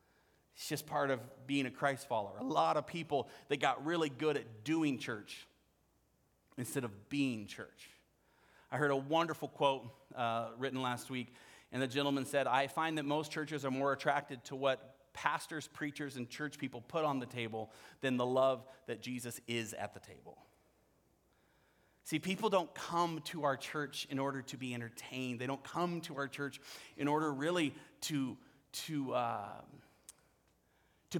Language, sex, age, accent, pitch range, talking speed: English, male, 30-49, American, 135-160 Hz, 170 wpm